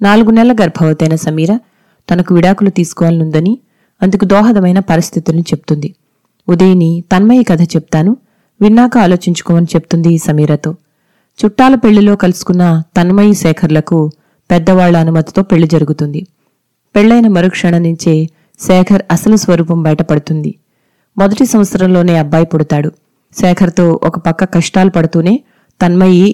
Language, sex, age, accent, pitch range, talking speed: Telugu, female, 30-49, native, 165-200 Hz, 100 wpm